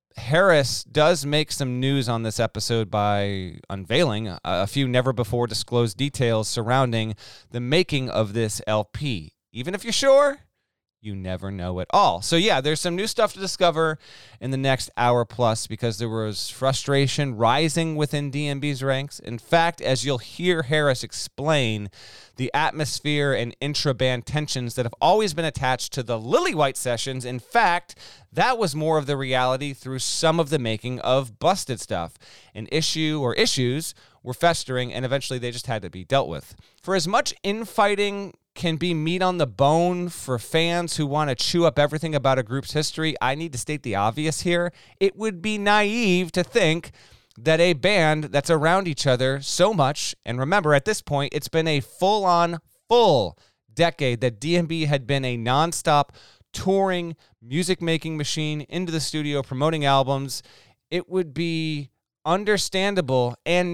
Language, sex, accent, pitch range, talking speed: English, male, American, 120-165 Hz, 165 wpm